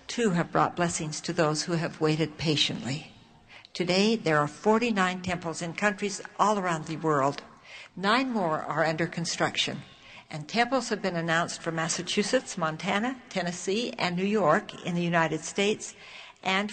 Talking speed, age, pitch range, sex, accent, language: 155 wpm, 60-79, 160-205 Hz, female, American, English